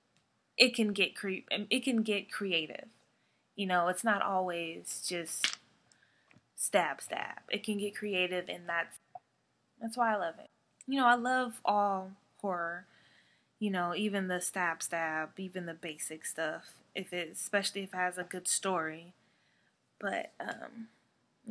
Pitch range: 185-235 Hz